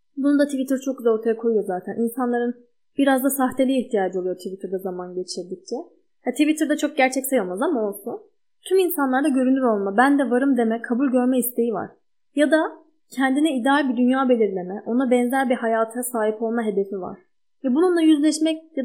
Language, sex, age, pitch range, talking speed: Turkish, female, 10-29, 225-290 Hz, 175 wpm